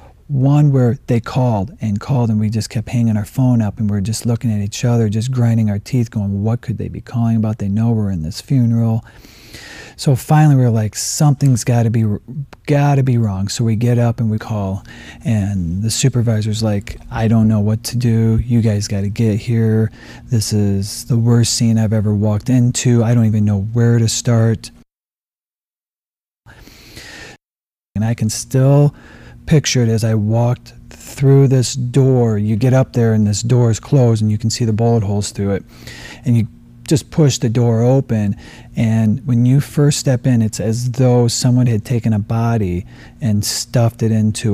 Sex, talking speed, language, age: male, 195 wpm, English, 40-59